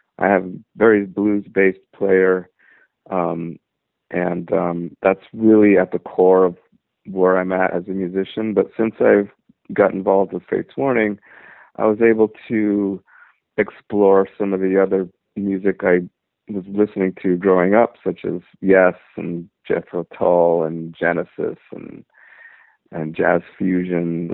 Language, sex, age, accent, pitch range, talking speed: English, male, 50-69, American, 90-100 Hz, 145 wpm